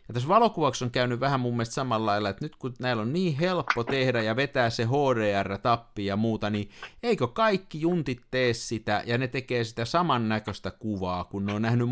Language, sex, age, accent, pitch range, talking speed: Finnish, male, 50-69, native, 100-140 Hz, 200 wpm